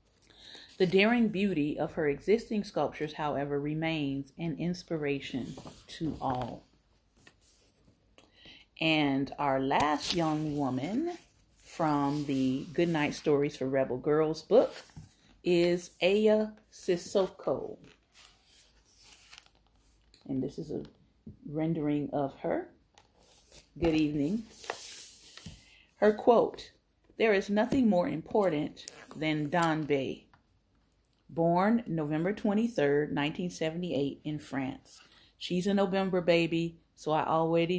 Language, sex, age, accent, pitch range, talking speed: English, female, 30-49, American, 150-195 Hz, 100 wpm